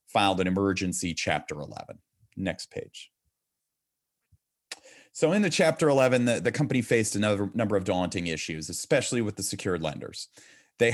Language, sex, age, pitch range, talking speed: English, male, 30-49, 85-105 Hz, 150 wpm